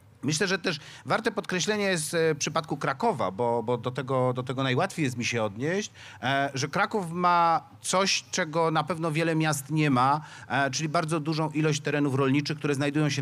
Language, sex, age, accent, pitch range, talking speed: Polish, male, 40-59, native, 135-170 Hz, 175 wpm